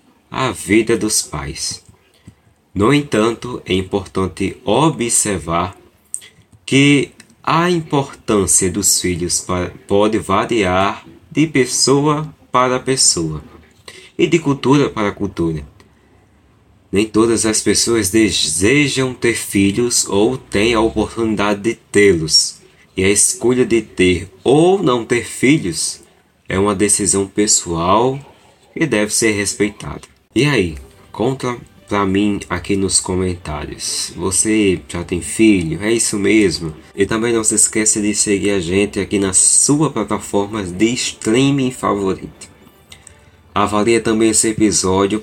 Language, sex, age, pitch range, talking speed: Portuguese, male, 20-39, 95-115 Hz, 120 wpm